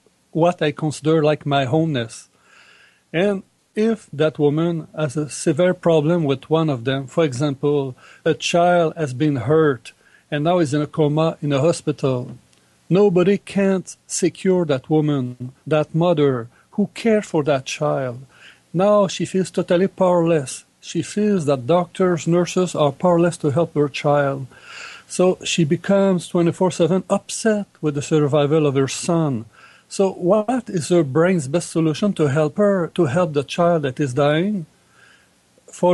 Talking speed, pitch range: 150 wpm, 145-175 Hz